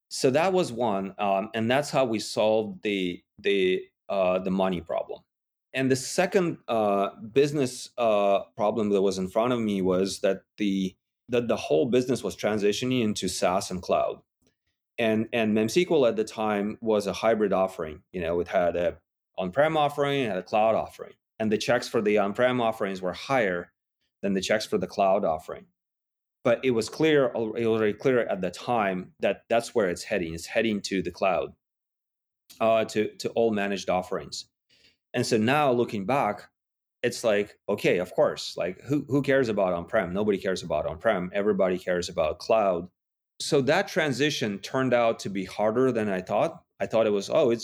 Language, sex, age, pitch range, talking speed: English, male, 30-49, 100-130 Hz, 185 wpm